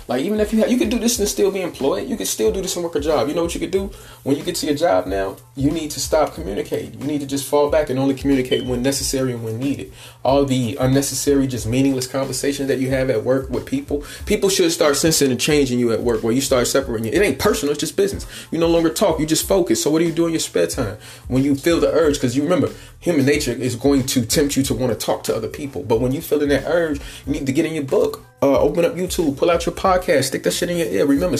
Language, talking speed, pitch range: English, 290 wpm, 115-145 Hz